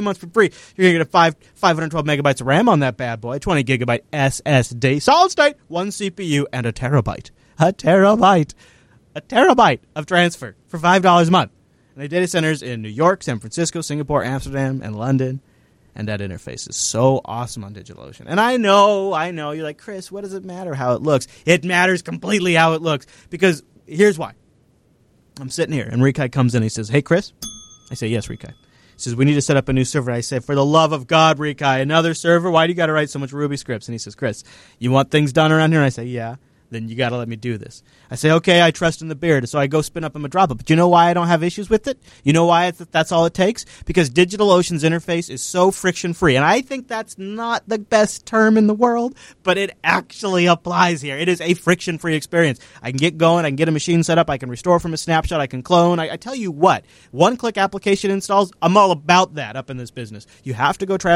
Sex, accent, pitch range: male, American, 135-180 Hz